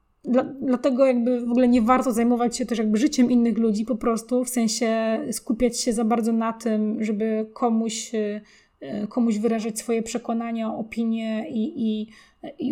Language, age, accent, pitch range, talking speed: Polish, 20-39, native, 225-255 Hz, 150 wpm